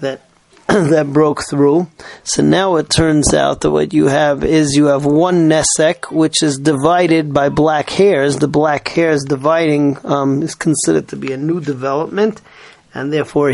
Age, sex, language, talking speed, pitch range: 30-49, male, English, 165 wpm, 140-160 Hz